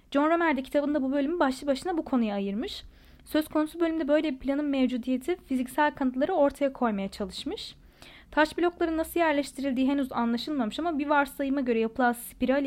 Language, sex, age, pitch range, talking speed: Turkish, female, 10-29, 245-310 Hz, 160 wpm